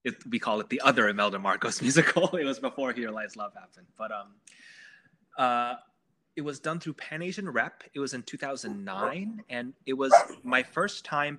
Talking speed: 195 wpm